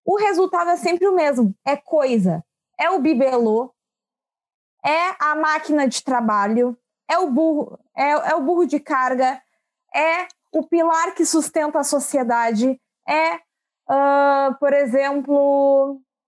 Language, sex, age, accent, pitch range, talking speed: Portuguese, female, 20-39, Brazilian, 260-335 Hz, 120 wpm